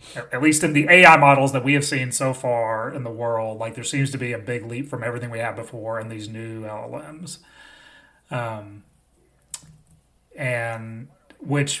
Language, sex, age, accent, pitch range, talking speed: English, male, 30-49, American, 115-140 Hz, 180 wpm